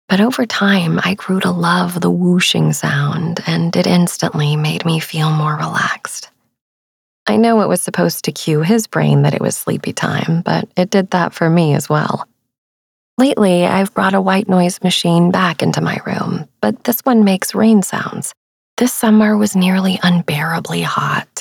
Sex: female